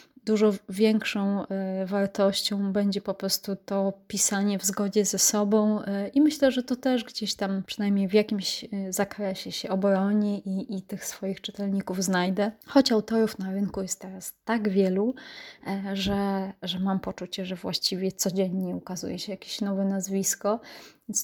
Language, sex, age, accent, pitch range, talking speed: Polish, female, 20-39, native, 195-225 Hz, 145 wpm